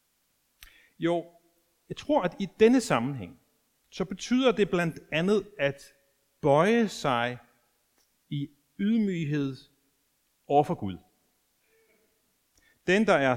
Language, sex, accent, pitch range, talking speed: Danish, male, native, 125-190 Hz, 105 wpm